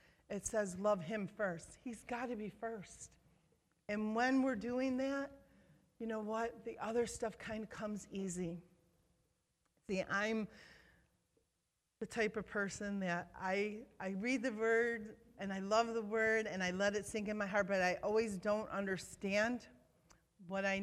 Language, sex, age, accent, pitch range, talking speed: English, female, 40-59, American, 190-230 Hz, 165 wpm